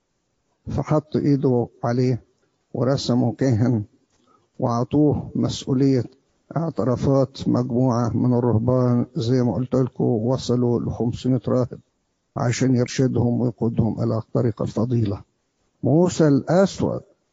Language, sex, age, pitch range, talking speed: English, male, 50-69, 120-150 Hz, 85 wpm